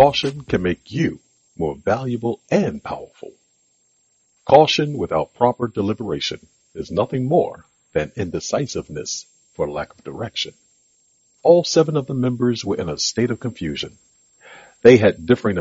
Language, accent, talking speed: English, American, 135 wpm